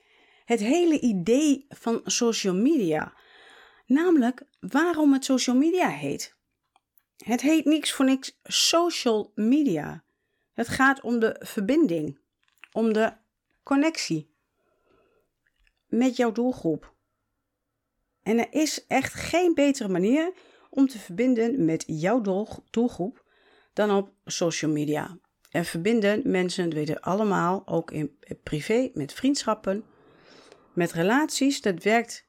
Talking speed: 115 wpm